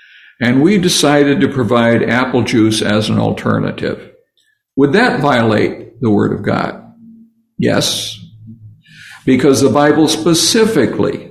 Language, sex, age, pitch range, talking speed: English, male, 60-79, 110-145 Hz, 115 wpm